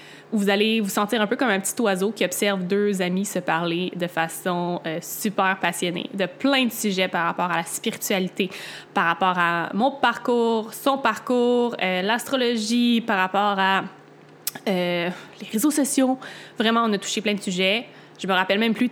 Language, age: French, 20-39